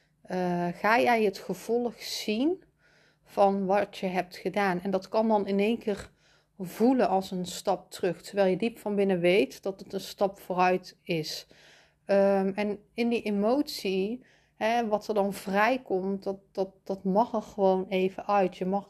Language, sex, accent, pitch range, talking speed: Dutch, female, Dutch, 185-210 Hz, 165 wpm